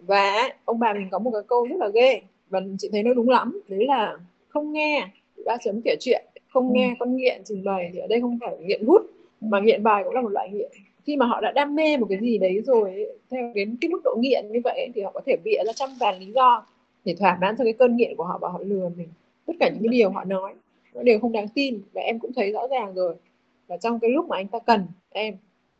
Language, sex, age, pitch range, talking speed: Vietnamese, female, 20-39, 200-260 Hz, 270 wpm